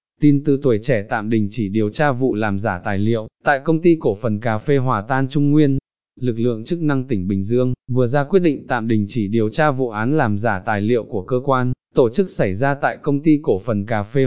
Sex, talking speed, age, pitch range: male, 255 wpm, 20-39, 110-145 Hz